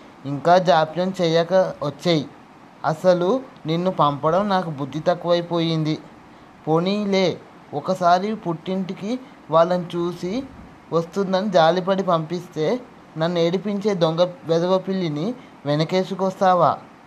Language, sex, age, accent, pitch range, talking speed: Telugu, male, 20-39, native, 170-195 Hz, 80 wpm